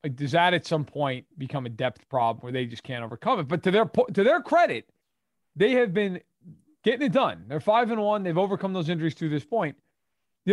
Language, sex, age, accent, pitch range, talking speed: English, male, 30-49, American, 150-195 Hz, 230 wpm